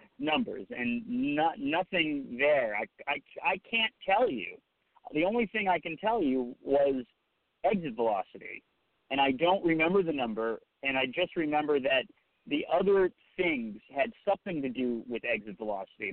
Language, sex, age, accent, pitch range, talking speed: English, male, 50-69, American, 130-200 Hz, 155 wpm